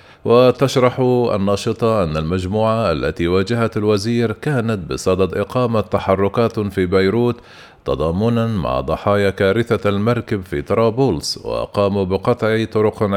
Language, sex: Arabic, male